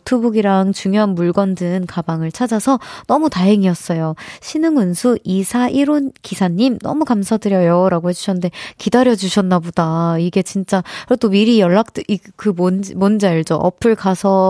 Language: Korean